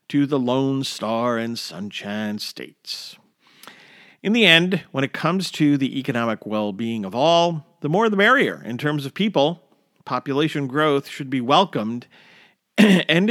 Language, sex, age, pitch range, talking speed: English, male, 50-69, 120-175 Hz, 150 wpm